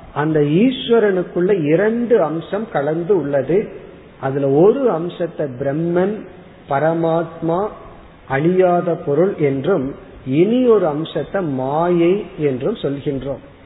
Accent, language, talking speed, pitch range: native, Tamil, 90 wpm, 150-195 Hz